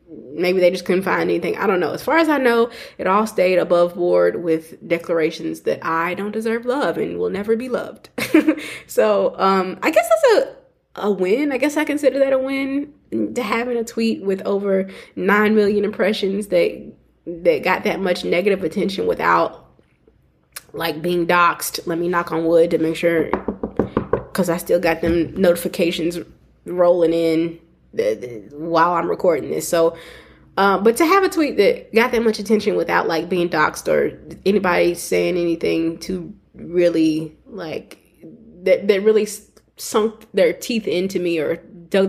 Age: 20-39